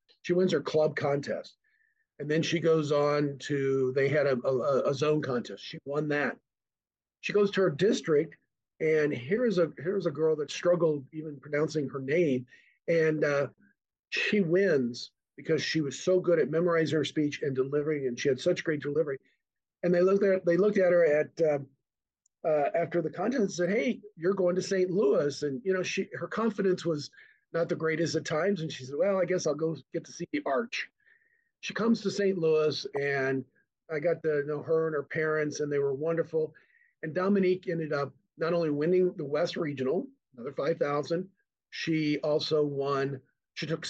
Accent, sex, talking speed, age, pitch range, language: American, male, 195 wpm, 50-69, 145-185 Hz, English